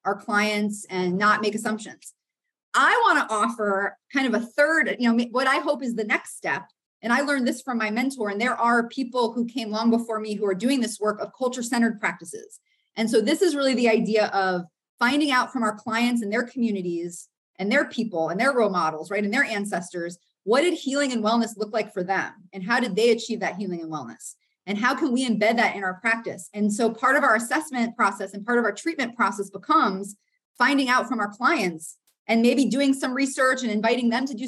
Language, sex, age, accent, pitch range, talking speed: English, female, 30-49, American, 210-255 Hz, 225 wpm